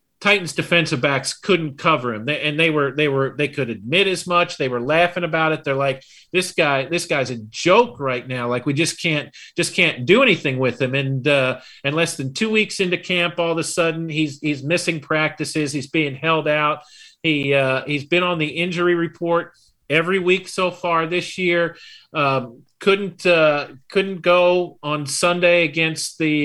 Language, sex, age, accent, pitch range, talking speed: English, male, 40-59, American, 145-175 Hz, 195 wpm